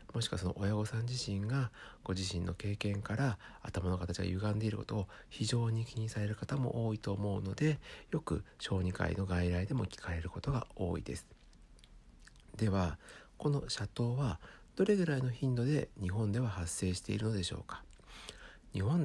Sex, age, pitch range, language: male, 60-79, 90-115 Hz, Japanese